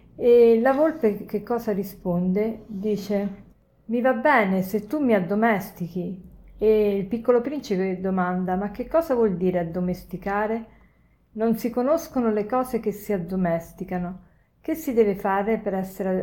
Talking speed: 145 wpm